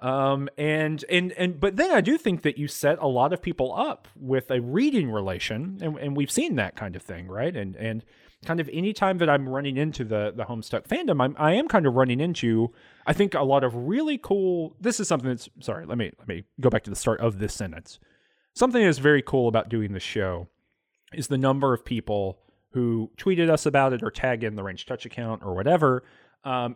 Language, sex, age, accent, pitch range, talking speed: English, male, 30-49, American, 115-160 Hz, 230 wpm